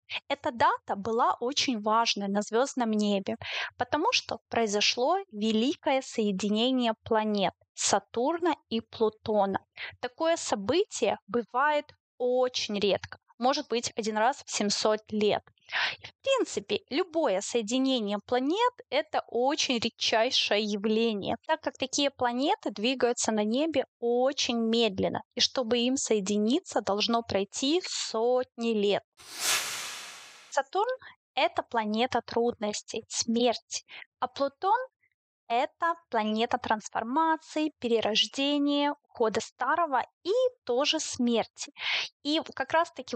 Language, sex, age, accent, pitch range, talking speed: Russian, female, 20-39, native, 225-295 Hz, 105 wpm